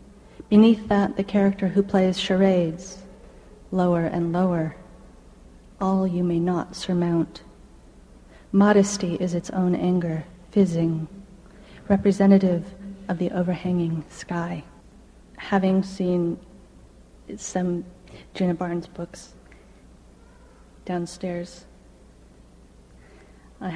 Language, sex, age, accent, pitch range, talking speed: English, female, 40-59, American, 170-195 Hz, 85 wpm